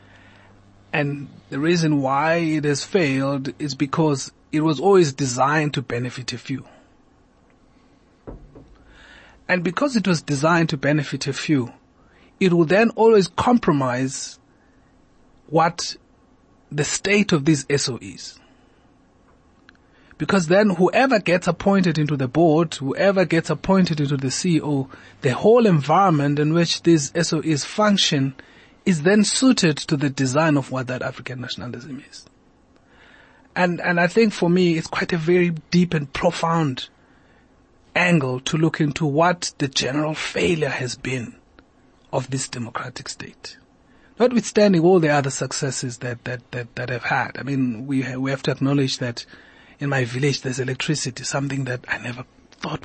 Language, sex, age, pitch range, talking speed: English, male, 30-49, 130-175 Hz, 145 wpm